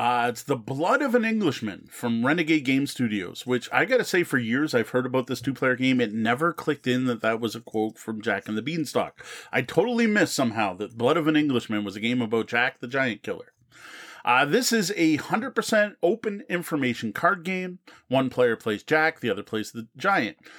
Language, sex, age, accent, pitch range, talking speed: English, male, 30-49, American, 125-175 Hz, 215 wpm